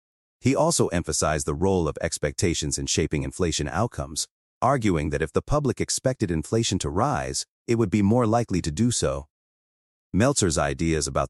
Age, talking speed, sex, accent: 40-59, 165 wpm, male, American